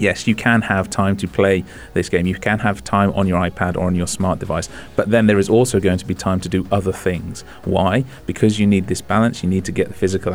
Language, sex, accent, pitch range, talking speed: English, male, British, 90-105 Hz, 265 wpm